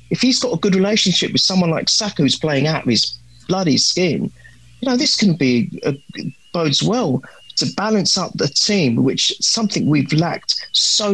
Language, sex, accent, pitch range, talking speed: English, male, British, 130-195 Hz, 190 wpm